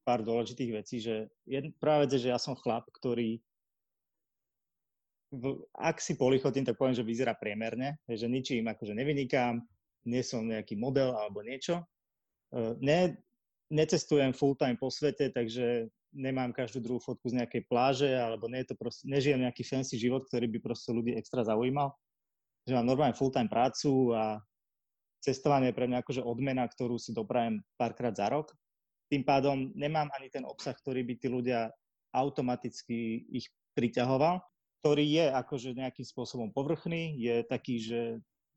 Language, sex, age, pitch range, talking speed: Slovak, male, 20-39, 120-140 Hz, 155 wpm